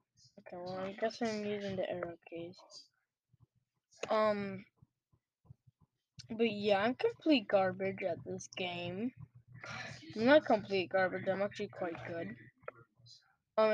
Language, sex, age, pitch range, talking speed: English, female, 10-29, 180-230 Hz, 120 wpm